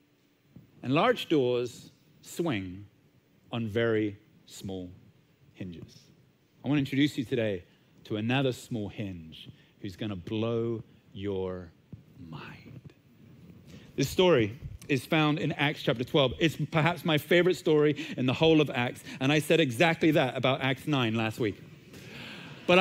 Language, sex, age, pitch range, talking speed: English, male, 40-59, 145-215 Hz, 140 wpm